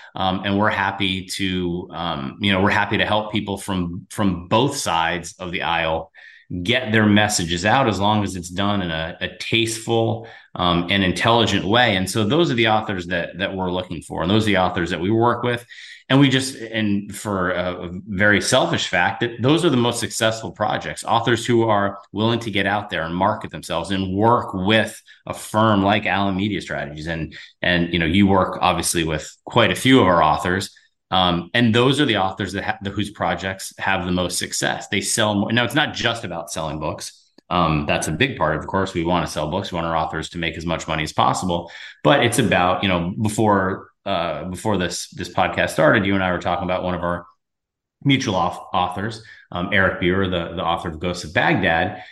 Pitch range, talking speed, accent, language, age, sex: 90-110 Hz, 220 wpm, American, English, 30-49, male